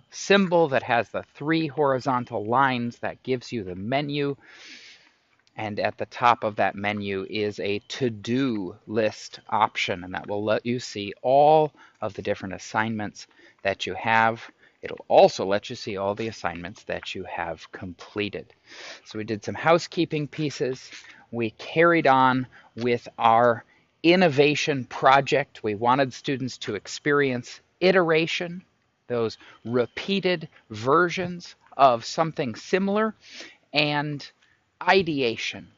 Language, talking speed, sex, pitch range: English, 130 wpm, male, 110-155 Hz